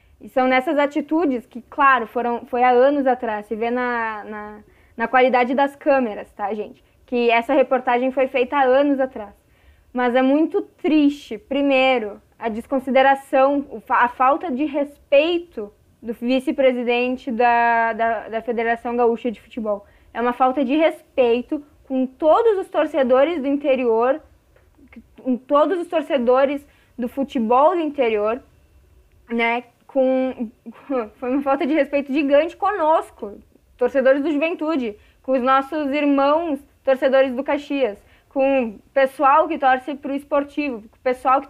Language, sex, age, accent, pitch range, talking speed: Portuguese, female, 10-29, Brazilian, 245-300 Hz, 140 wpm